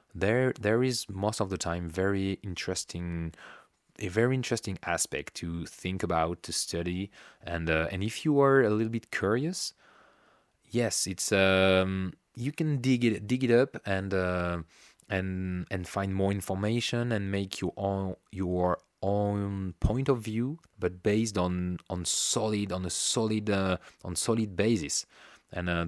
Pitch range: 90-110 Hz